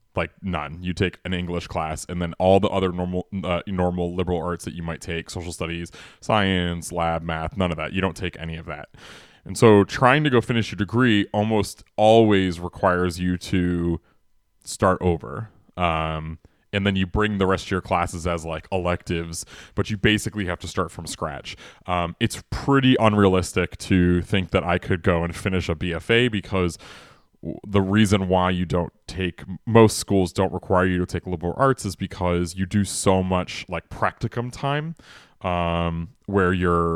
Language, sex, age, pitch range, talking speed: English, male, 20-39, 85-100 Hz, 185 wpm